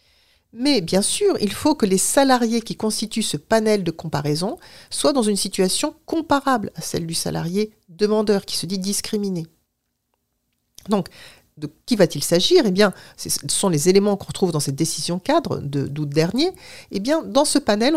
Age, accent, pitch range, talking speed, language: 50-69, French, 165-240 Hz, 175 wpm, French